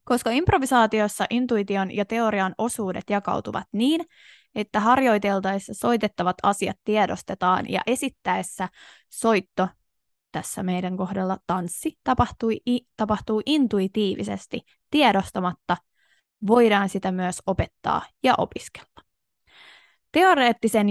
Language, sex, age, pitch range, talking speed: Finnish, female, 20-39, 190-235 Hz, 85 wpm